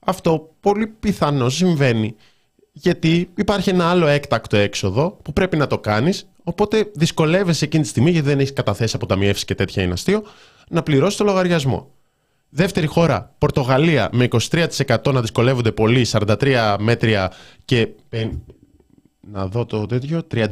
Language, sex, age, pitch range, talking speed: Greek, male, 20-39, 100-145 Hz, 145 wpm